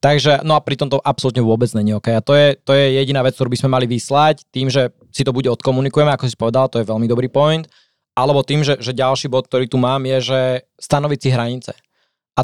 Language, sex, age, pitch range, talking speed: Slovak, male, 20-39, 130-145 Hz, 240 wpm